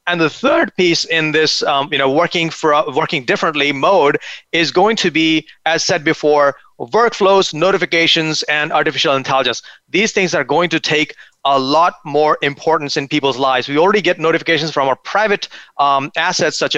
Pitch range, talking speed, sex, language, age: 150-185 Hz, 180 wpm, male, English, 30-49